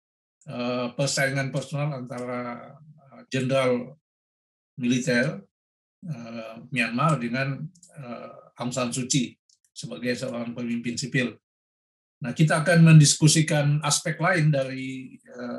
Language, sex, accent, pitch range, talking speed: Indonesian, male, native, 125-145 Hz, 95 wpm